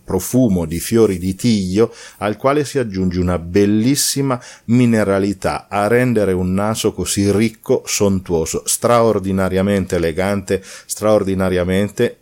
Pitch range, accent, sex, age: 90-110 Hz, native, male, 40-59